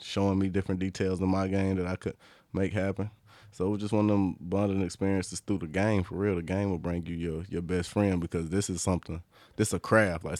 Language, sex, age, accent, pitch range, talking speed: English, male, 20-39, American, 85-95 Hz, 260 wpm